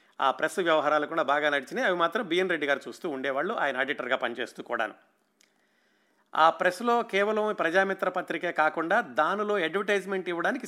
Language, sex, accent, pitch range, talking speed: Telugu, male, native, 145-195 Hz, 145 wpm